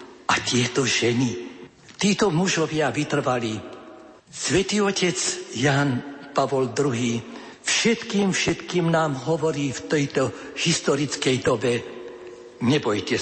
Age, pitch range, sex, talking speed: 60-79, 125-155 Hz, male, 90 wpm